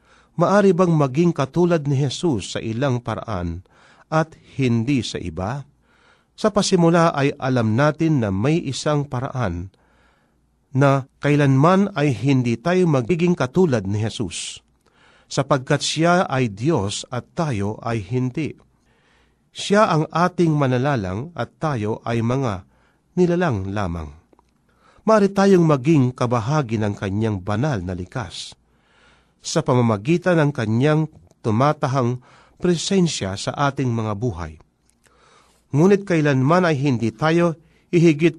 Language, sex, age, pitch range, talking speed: Filipino, male, 40-59, 115-165 Hz, 115 wpm